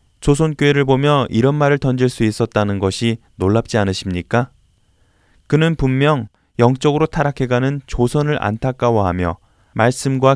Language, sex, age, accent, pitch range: Korean, male, 20-39, native, 100-145 Hz